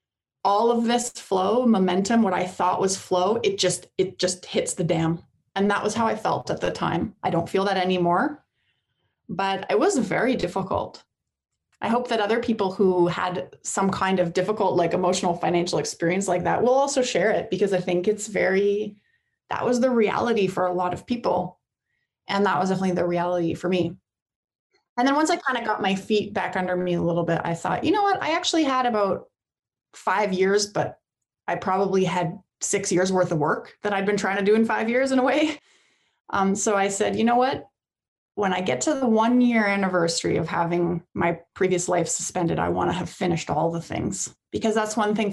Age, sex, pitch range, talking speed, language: 20-39, female, 180-220 Hz, 210 wpm, English